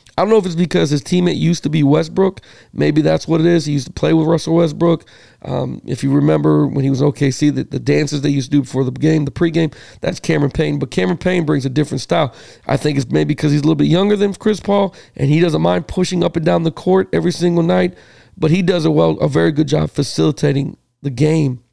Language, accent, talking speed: English, American, 255 wpm